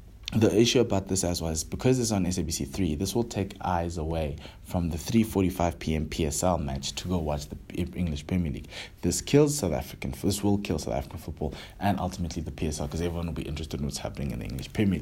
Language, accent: English, South African